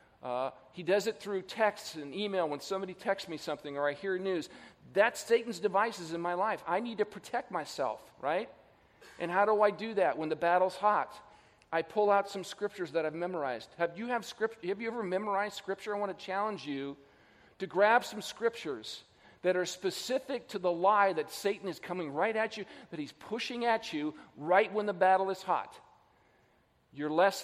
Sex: male